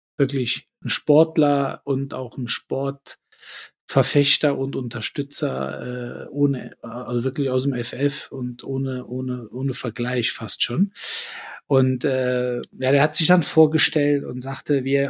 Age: 50-69